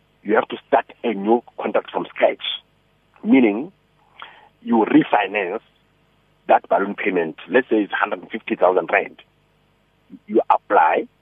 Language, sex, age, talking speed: English, male, 50-69, 120 wpm